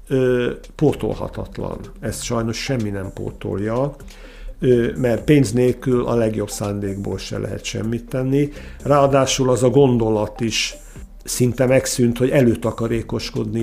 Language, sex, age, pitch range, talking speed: Hungarian, male, 60-79, 110-135 Hz, 120 wpm